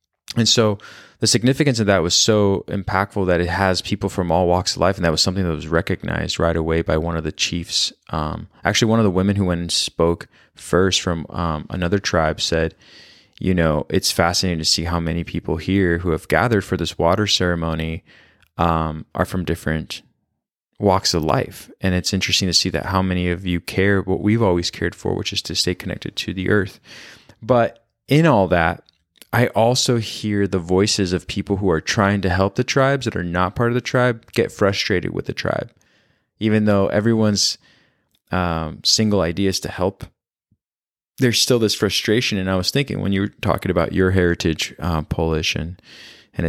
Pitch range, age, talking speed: 85-105 Hz, 20-39, 200 wpm